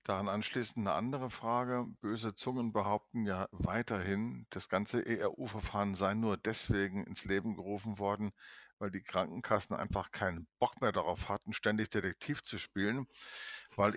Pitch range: 100-130 Hz